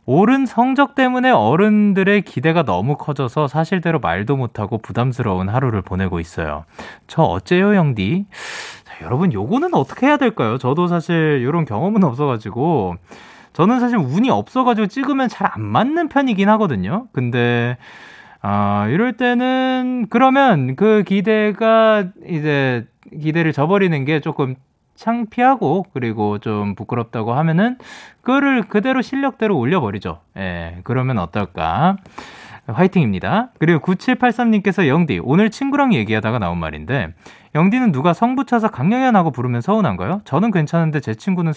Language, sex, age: Korean, male, 20-39